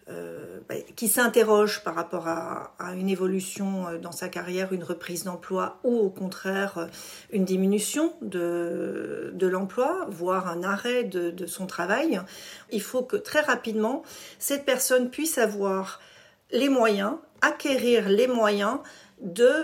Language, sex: French, female